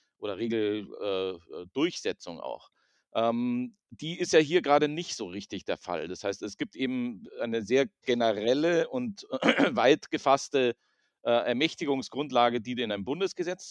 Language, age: German, 40-59